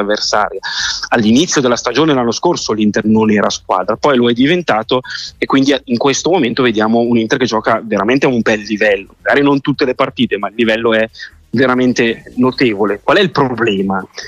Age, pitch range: 30-49, 115-150 Hz